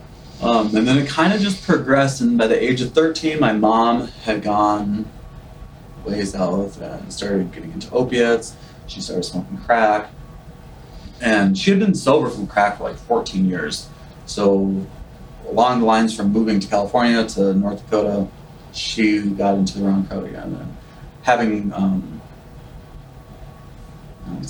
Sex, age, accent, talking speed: male, 30-49, American, 155 wpm